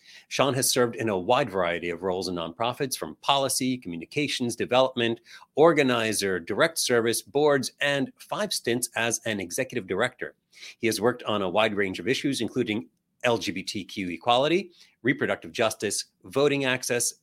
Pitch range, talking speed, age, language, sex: 110-140 Hz, 145 wpm, 40-59, English, male